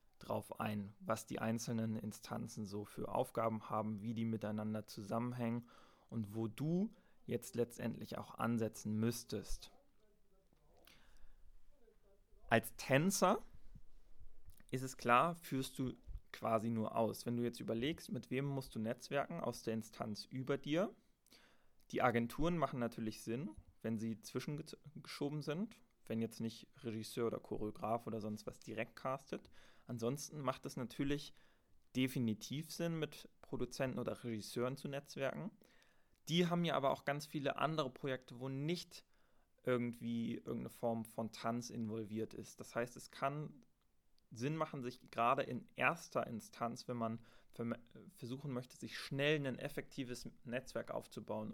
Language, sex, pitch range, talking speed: German, male, 110-140 Hz, 135 wpm